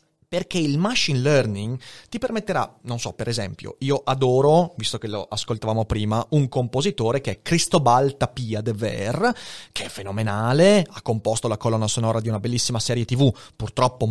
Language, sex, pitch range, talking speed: Italian, male, 115-170 Hz, 165 wpm